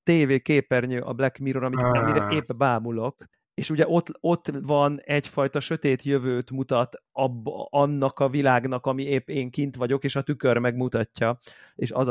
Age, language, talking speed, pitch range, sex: 30-49, Hungarian, 165 wpm, 115-140 Hz, male